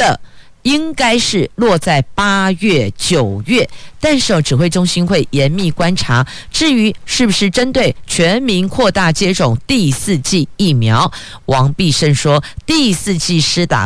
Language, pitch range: Chinese, 140-195 Hz